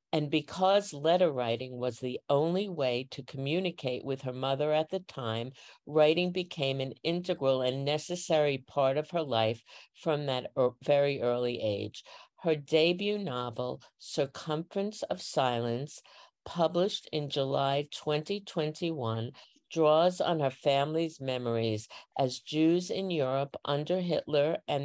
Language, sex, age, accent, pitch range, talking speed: English, female, 50-69, American, 125-165 Hz, 130 wpm